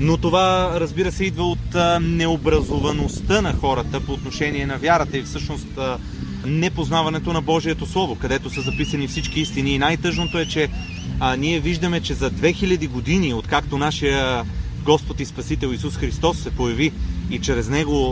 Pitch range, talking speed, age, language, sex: 130-165 Hz, 160 wpm, 30-49, Bulgarian, male